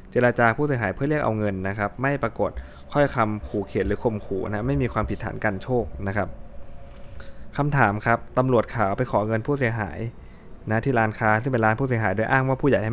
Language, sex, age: Thai, male, 20-39